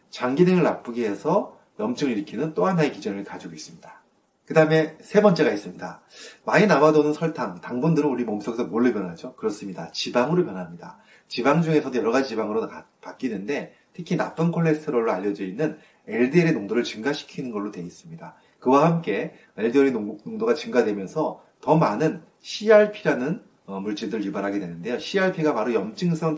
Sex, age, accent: male, 30-49, native